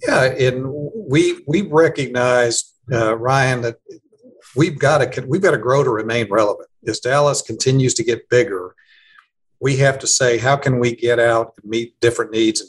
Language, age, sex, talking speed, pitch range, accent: English, 50-69, male, 180 wpm, 115-135 Hz, American